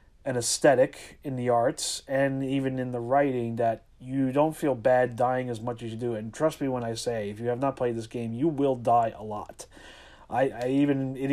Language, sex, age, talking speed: English, male, 30-49, 230 wpm